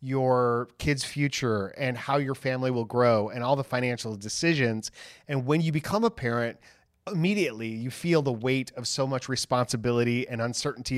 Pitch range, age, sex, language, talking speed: 120-150 Hz, 30-49, male, English, 170 wpm